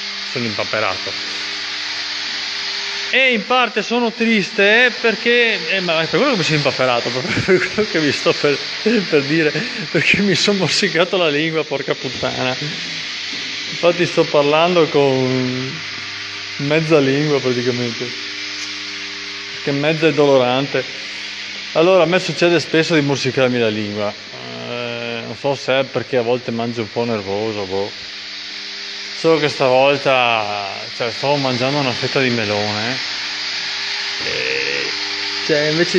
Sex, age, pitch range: male, 20-39, 120-165 Hz